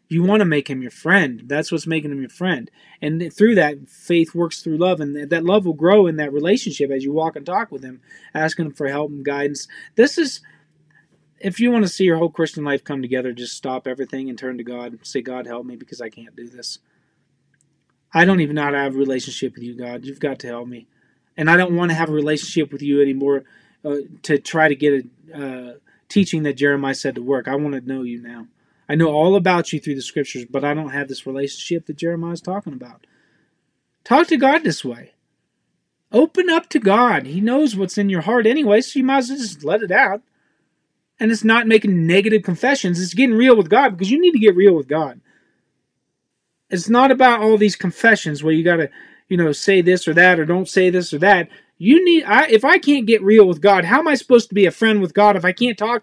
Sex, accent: male, American